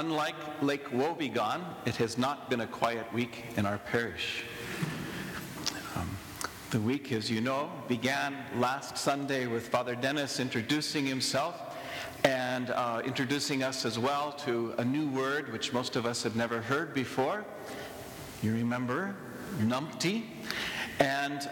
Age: 50-69